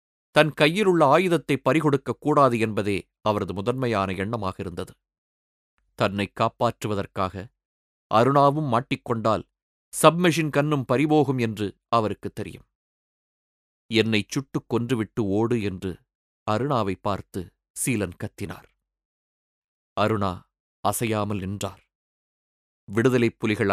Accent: native